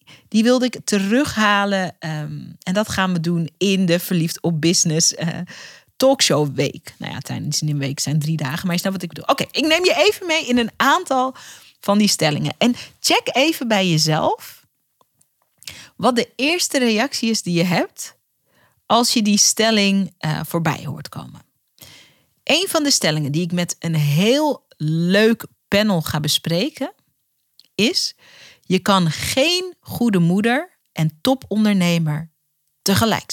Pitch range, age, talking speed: 160-240 Hz, 40-59, 155 wpm